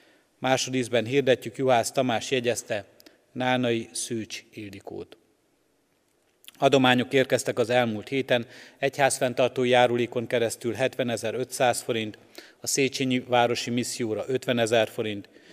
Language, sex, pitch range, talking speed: Hungarian, male, 115-130 Hz, 95 wpm